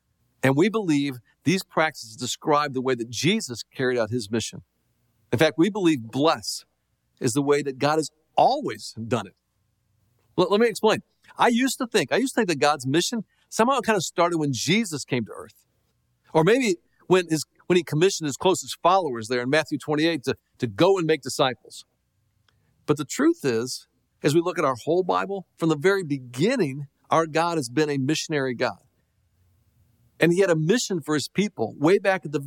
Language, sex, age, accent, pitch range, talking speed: English, male, 50-69, American, 125-175 Hz, 190 wpm